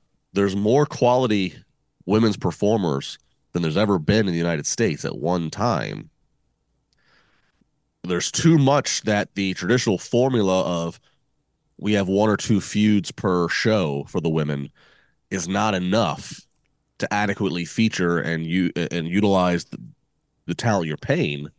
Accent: American